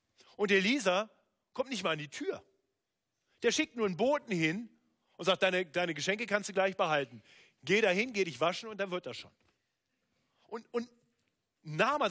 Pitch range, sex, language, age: 135-195 Hz, male, German, 40-59